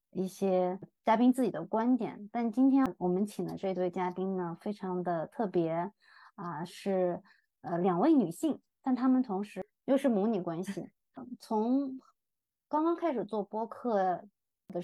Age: 20-39